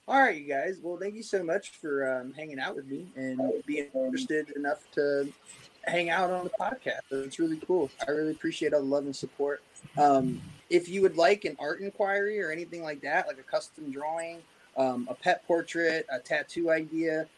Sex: male